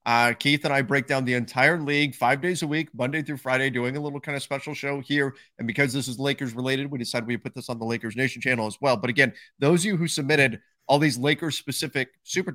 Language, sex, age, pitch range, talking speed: English, male, 30-49, 125-150 Hz, 260 wpm